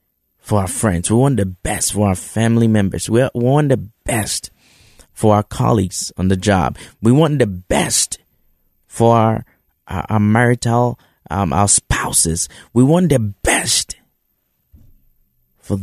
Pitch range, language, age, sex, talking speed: 95-120 Hz, English, 30-49, male, 145 wpm